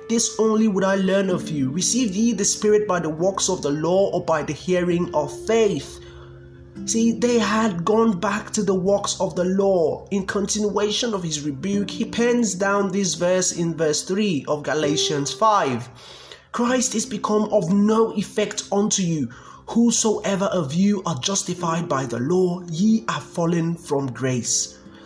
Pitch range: 175-220 Hz